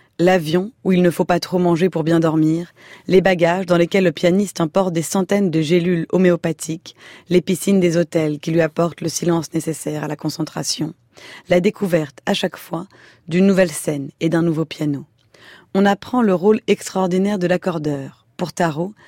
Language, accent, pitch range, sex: French, French, 160-195 Hz, female